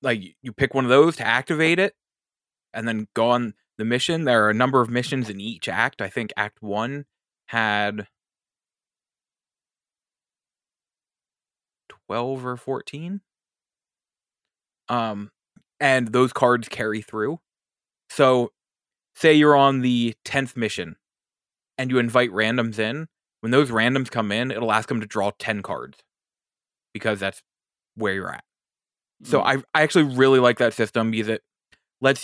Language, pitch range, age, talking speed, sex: English, 110-135 Hz, 20-39, 145 wpm, male